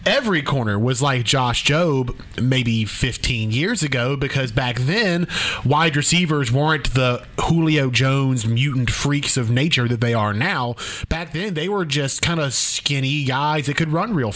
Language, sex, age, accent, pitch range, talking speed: English, male, 30-49, American, 120-150 Hz, 165 wpm